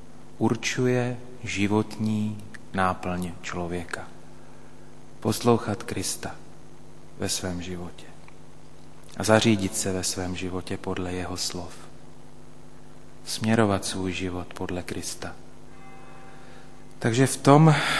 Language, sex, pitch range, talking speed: Slovak, male, 95-110 Hz, 85 wpm